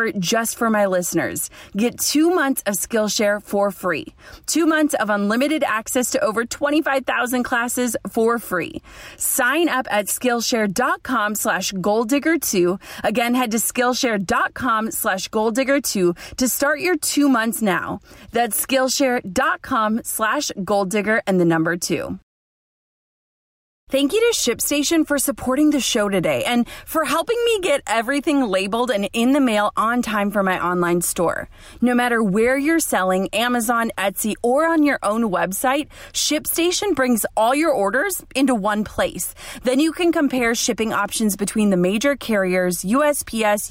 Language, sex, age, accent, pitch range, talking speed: English, female, 30-49, American, 210-280 Hz, 145 wpm